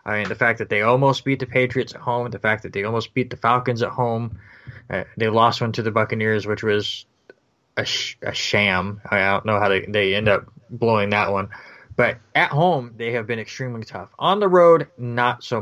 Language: English